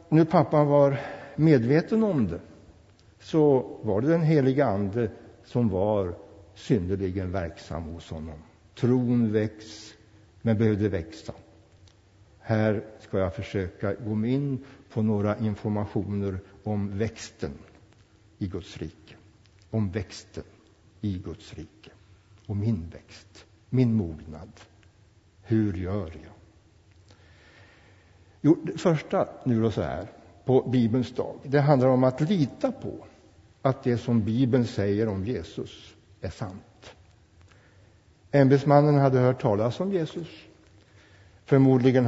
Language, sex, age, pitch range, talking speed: Swedish, male, 60-79, 95-120 Hz, 115 wpm